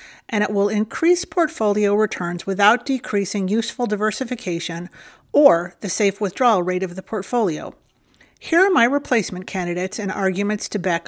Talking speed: 145 wpm